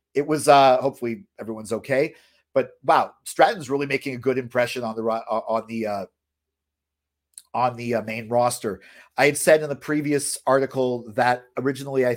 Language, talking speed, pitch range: English, 175 wpm, 115-140 Hz